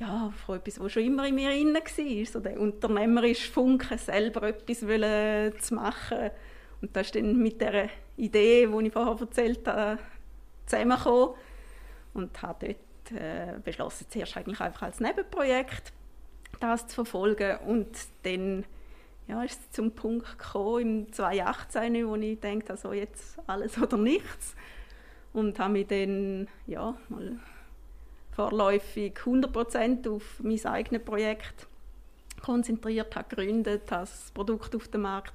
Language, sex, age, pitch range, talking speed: German, female, 20-39, 205-235 Hz, 140 wpm